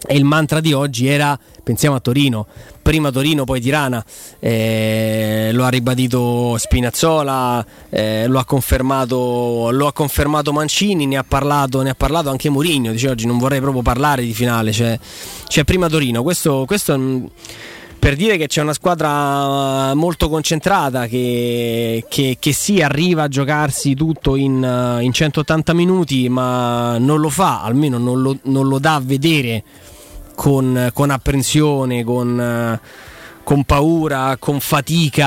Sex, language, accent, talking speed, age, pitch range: male, Italian, native, 150 wpm, 20-39, 120-150 Hz